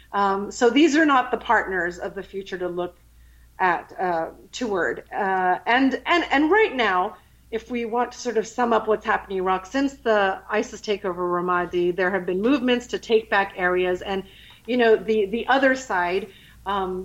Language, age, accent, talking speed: English, 40-59, American, 195 wpm